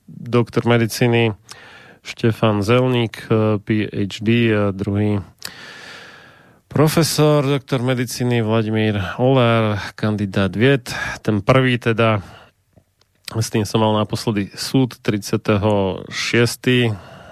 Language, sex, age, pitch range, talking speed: Slovak, male, 30-49, 100-115 Hz, 85 wpm